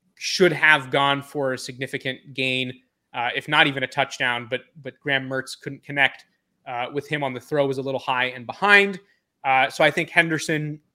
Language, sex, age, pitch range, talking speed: English, male, 20-39, 135-160 Hz, 195 wpm